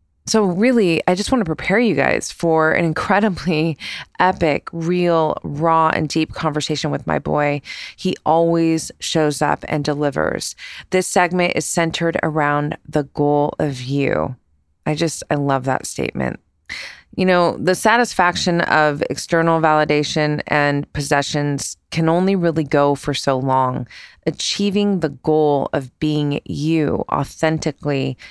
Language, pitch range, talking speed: English, 145-170 Hz, 140 wpm